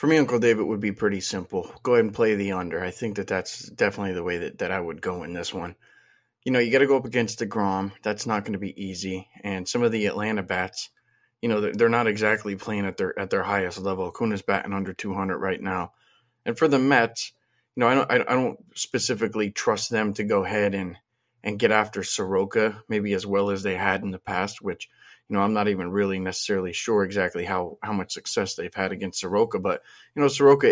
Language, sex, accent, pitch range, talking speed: English, male, American, 100-115 Hz, 240 wpm